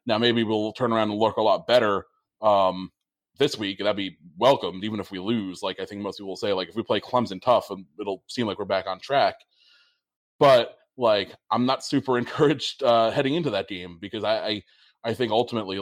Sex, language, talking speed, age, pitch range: male, English, 220 wpm, 20-39, 100-125 Hz